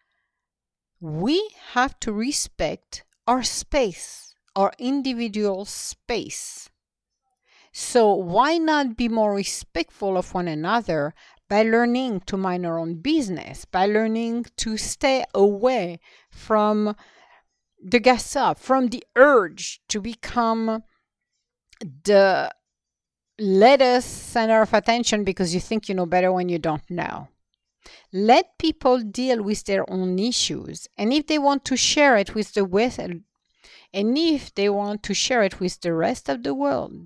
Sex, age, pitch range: female, 50-69, 195-255 Hz